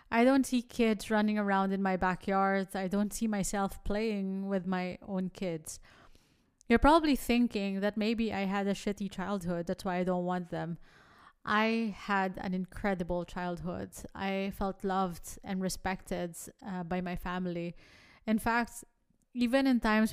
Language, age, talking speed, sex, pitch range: English, 20-39, 160 wpm, female, 190-220 Hz